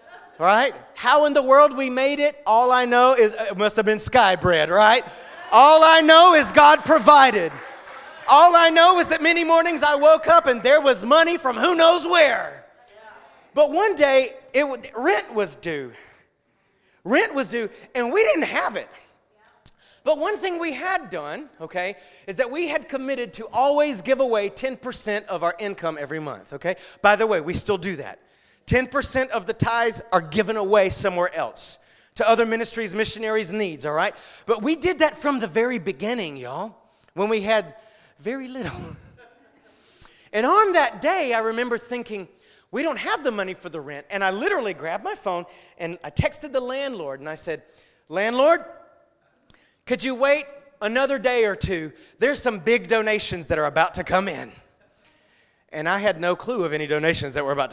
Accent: American